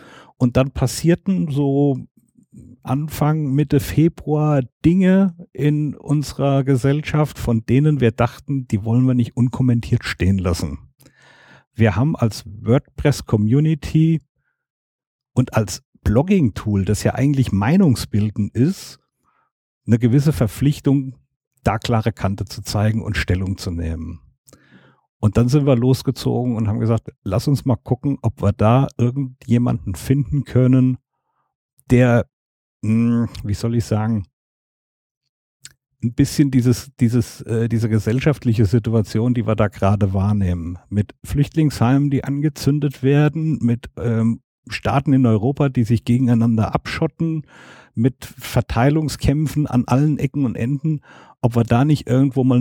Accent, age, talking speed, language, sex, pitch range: German, 50-69, 120 wpm, German, male, 110-140 Hz